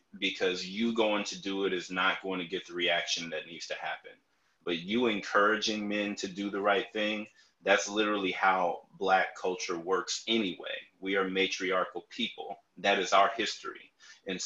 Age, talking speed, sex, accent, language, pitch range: 30-49, 175 wpm, male, American, English, 90-105 Hz